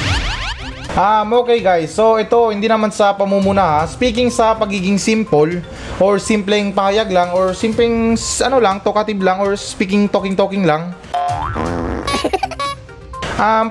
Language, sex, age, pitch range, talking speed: Filipino, male, 20-39, 200-250 Hz, 125 wpm